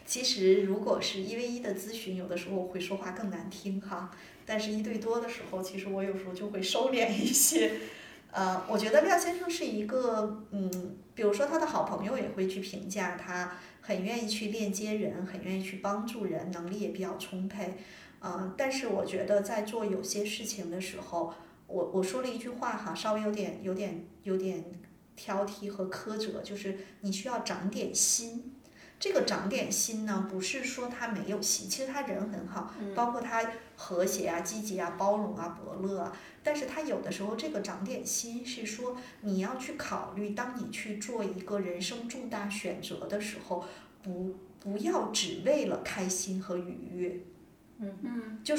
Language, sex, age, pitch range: Chinese, female, 30-49, 190-230 Hz